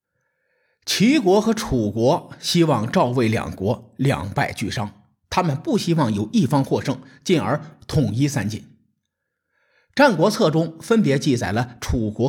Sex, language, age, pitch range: male, Chinese, 50-69, 115-165 Hz